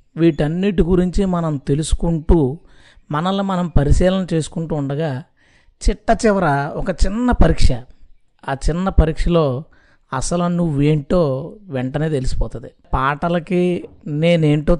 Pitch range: 140-175 Hz